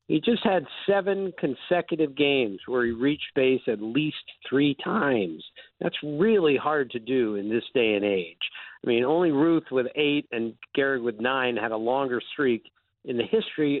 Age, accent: 50-69, American